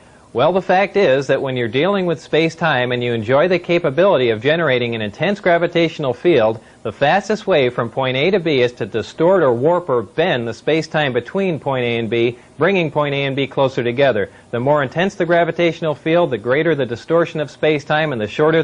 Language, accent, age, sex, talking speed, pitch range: English, American, 40-59, male, 210 wpm, 130-165 Hz